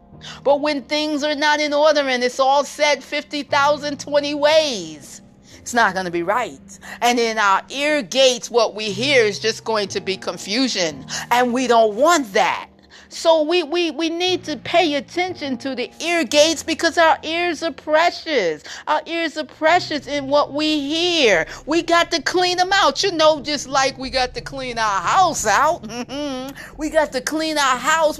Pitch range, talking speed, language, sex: 240-320 Hz, 190 wpm, English, female